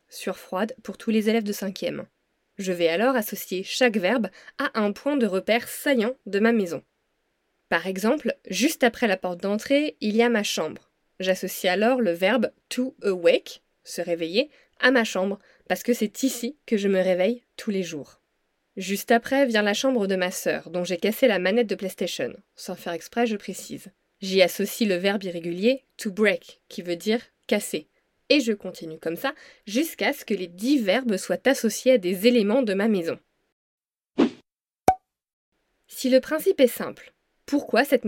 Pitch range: 190-255 Hz